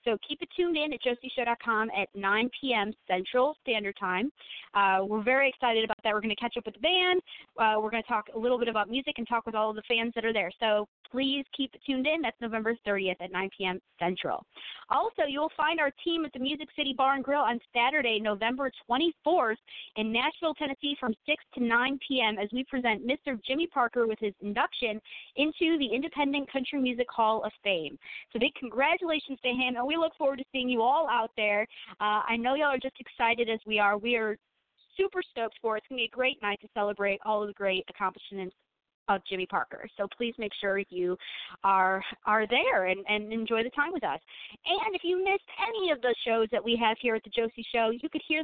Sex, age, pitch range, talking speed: female, 30-49, 215-275 Hz, 225 wpm